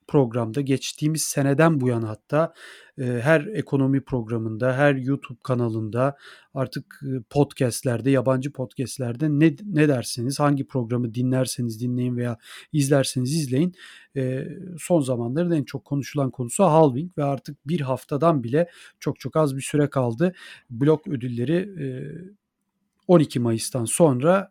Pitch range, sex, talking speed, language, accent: 130-160 Hz, male, 125 wpm, Turkish, native